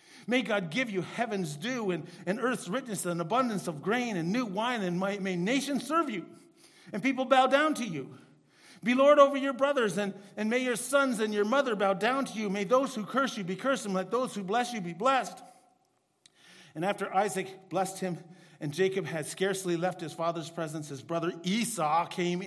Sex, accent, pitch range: male, American, 180-265 Hz